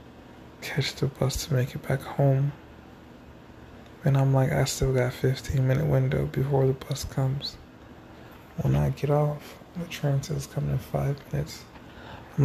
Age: 20-39